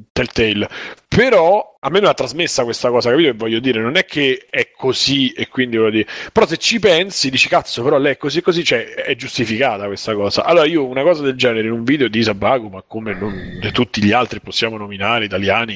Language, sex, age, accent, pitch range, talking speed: Italian, male, 30-49, native, 115-140 Hz, 215 wpm